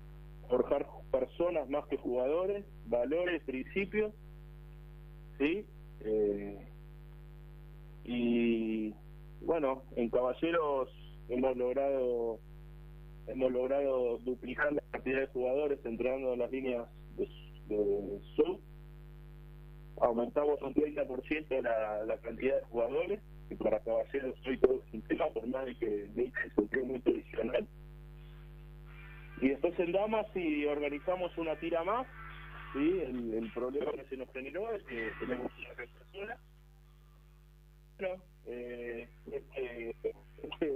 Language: Spanish